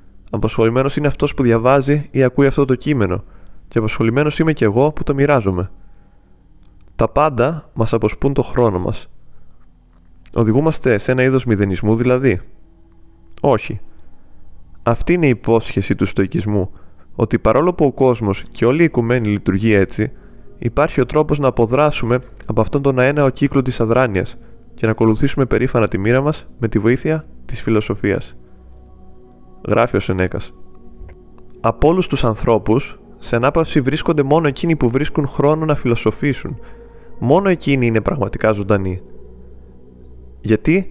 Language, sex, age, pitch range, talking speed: Greek, male, 20-39, 100-140 Hz, 140 wpm